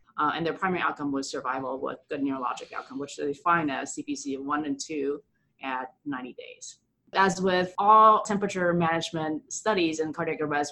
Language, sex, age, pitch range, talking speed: English, female, 30-49, 145-175 Hz, 180 wpm